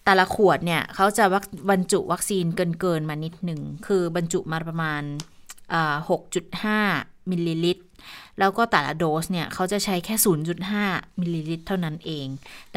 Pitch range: 170-210 Hz